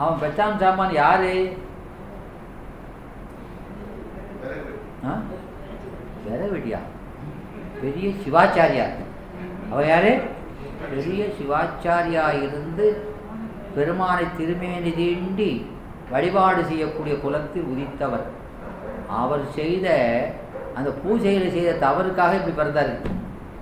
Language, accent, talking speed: Tamil, native, 70 wpm